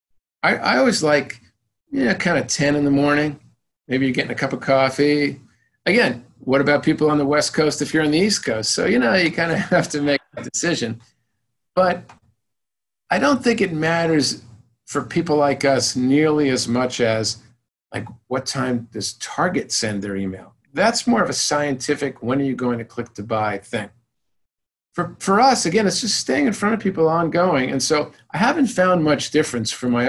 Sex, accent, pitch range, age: male, American, 115-155 Hz, 50-69